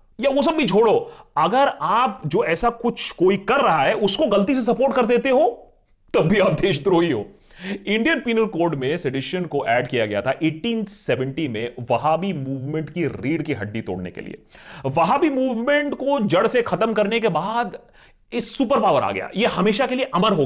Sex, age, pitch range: male, 30-49, 145-235 Hz